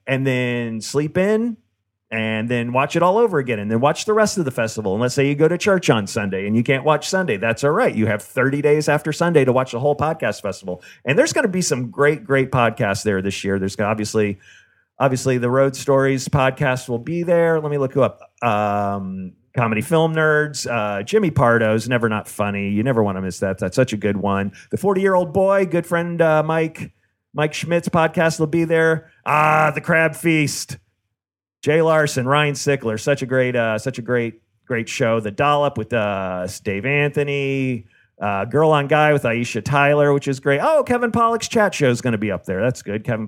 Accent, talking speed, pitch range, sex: American, 215 wpm, 110-155 Hz, male